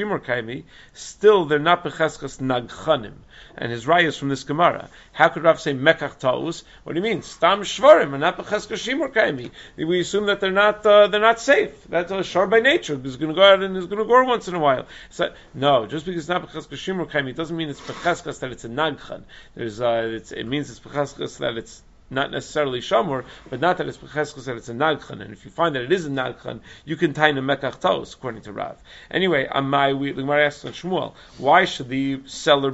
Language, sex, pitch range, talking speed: English, male, 135-170 Hz, 210 wpm